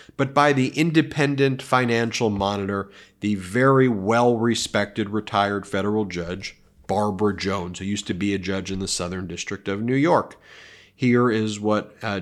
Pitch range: 100-135 Hz